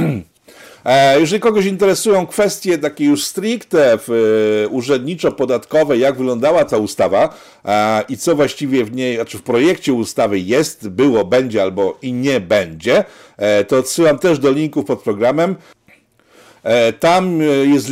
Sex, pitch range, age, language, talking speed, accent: male, 120-155 Hz, 50-69, Polish, 125 wpm, native